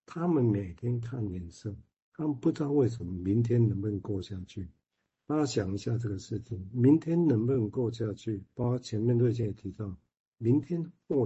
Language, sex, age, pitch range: Chinese, male, 60-79, 105-125 Hz